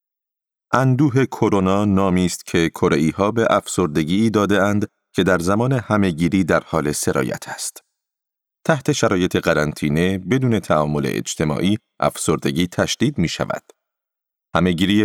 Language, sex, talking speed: Persian, male, 115 wpm